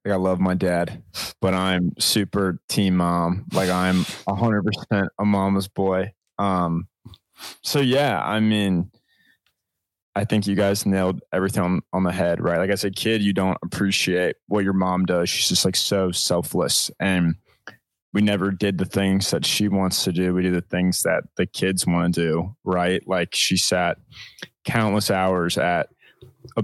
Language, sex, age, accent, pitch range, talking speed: English, male, 20-39, American, 90-105 Hz, 180 wpm